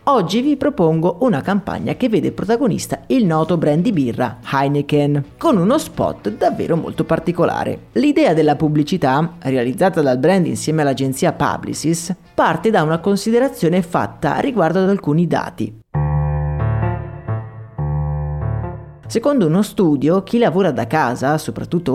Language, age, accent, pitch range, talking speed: Italian, 30-49, native, 140-200 Hz, 125 wpm